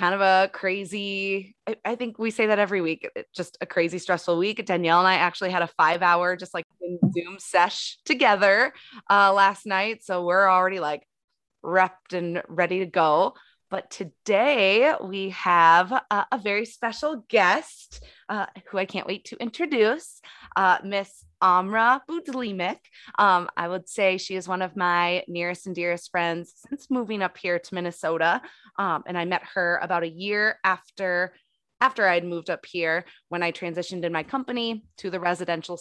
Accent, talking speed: American, 175 wpm